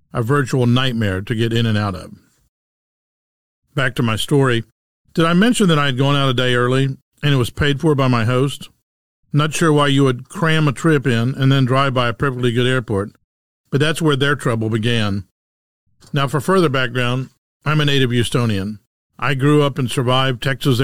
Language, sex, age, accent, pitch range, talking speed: English, male, 50-69, American, 115-145 Hz, 200 wpm